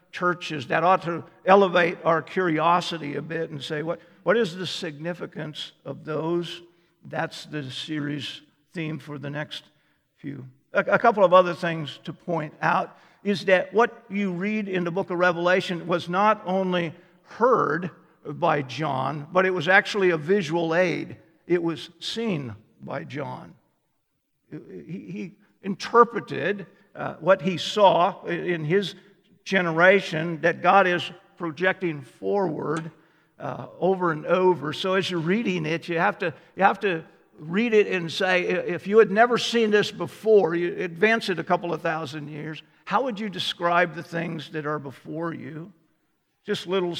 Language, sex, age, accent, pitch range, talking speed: English, male, 50-69, American, 155-185 Hz, 155 wpm